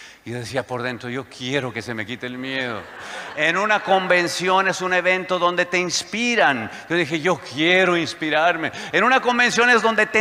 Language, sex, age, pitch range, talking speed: Spanish, male, 40-59, 160-235 Hz, 190 wpm